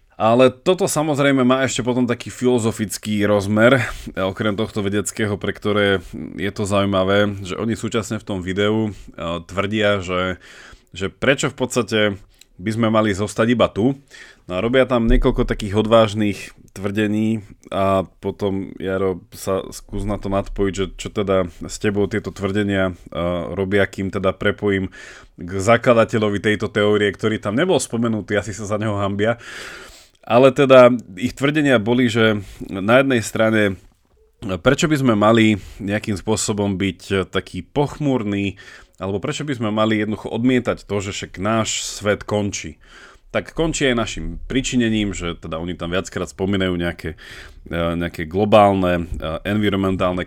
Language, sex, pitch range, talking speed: Slovak, male, 95-115 Hz, 145 wpm